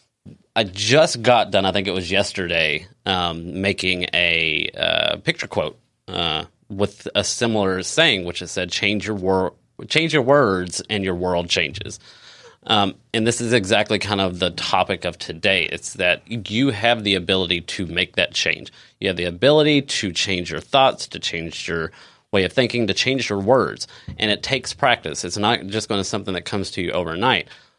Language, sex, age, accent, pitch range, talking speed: English, male, 30-49, American, 95-120 Hz, 190 wpm